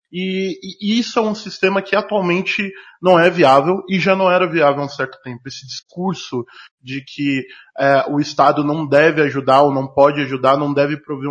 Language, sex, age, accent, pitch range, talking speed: Portuguese, male, 20-39, Brazilian, 145-190 Hz, 190 wpm